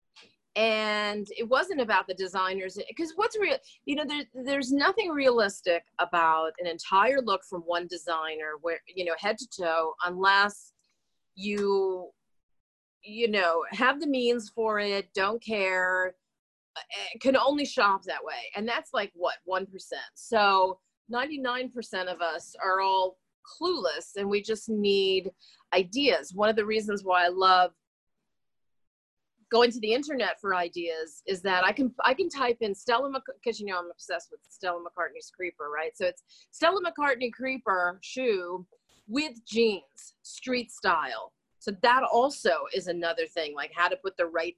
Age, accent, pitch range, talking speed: 30-49, American, 180-250 Hz, 160 wpm